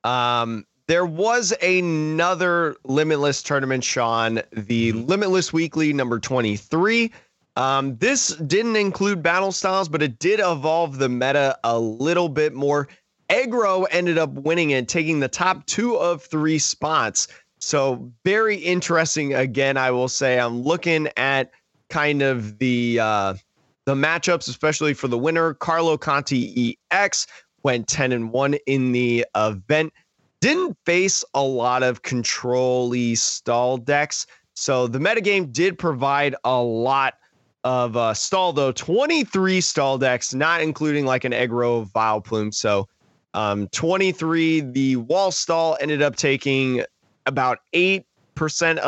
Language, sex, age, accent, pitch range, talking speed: English, male, 30-49, American, 125-165 Hz, 135 wpm